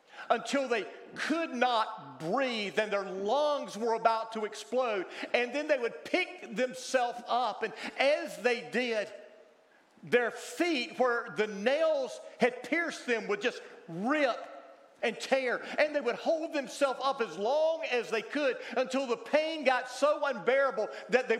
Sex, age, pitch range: male, 40-59, 225-275 Hz